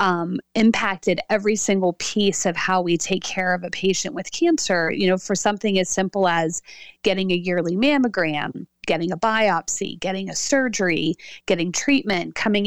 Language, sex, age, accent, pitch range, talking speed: English, female, 30-49, American, 185-225 Hz, 165 wpm